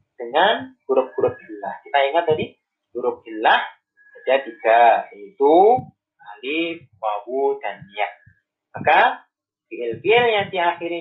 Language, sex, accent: Indonesian, male, native